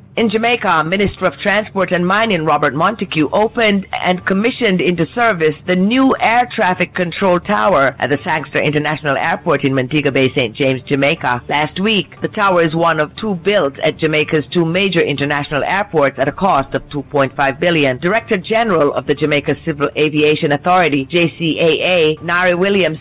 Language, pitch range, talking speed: English, 145-195 Hz, 165 wpm